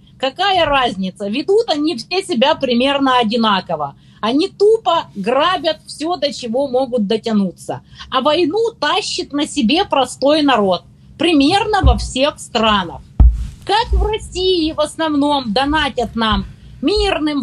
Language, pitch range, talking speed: Russian, 250-340 Hz, 120 wpm